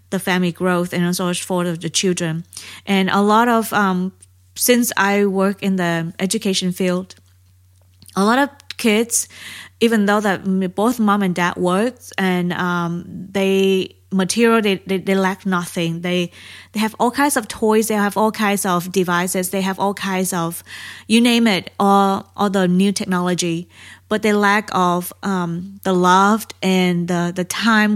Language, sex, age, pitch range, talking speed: English, female, 20-39, 180-205 Hz, 165 wpm